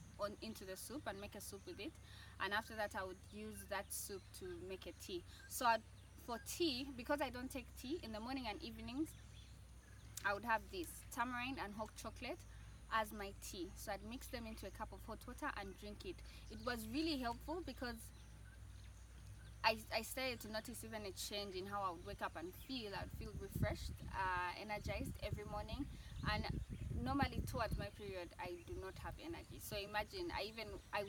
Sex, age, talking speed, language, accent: female, 20-39, 200 wpm, English, South African